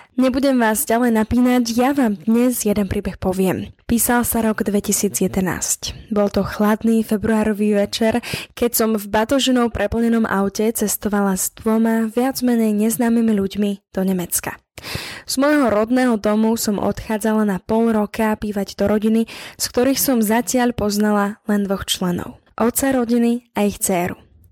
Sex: female